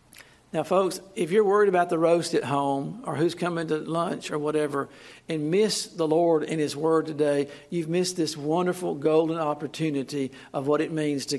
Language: English